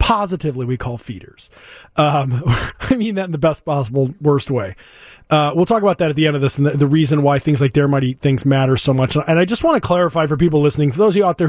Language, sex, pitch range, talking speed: English, male, 145-170 Hz, 270 wpm